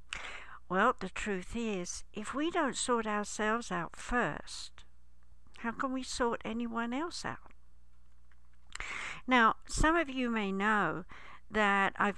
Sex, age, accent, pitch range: female, 60-79, British, 175-235 Hz